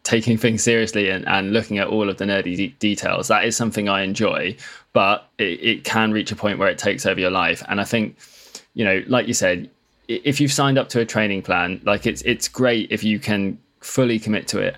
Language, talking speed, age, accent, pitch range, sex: English, 230 wpm, 20-39, British, 100-120 Hz, male